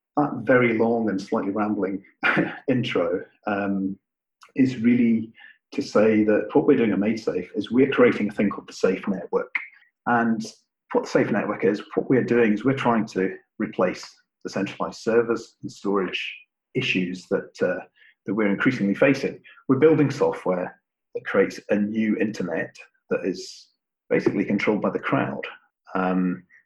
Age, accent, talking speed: 40-59, British, 160 wpm